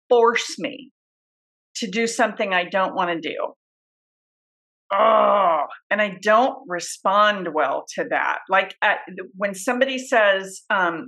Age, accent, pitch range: 40-59, American, 230-325 Hz